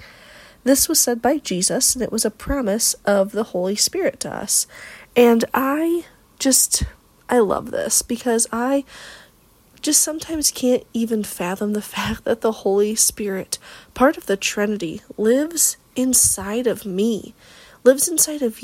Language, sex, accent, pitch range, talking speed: English, female, American, 215-270 Hz, 150 wpm